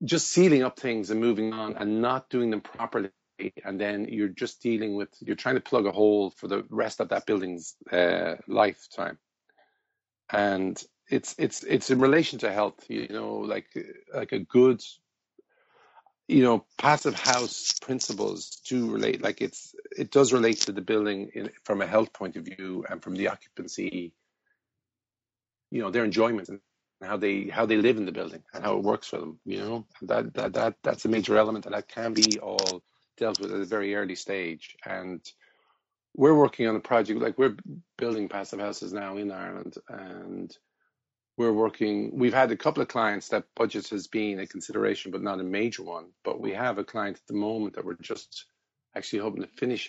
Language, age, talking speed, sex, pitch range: English, 50-69, 190 wpm, male, 105-130 Hz